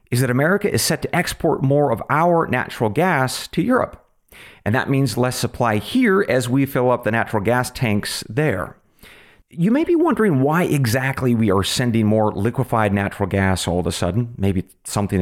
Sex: male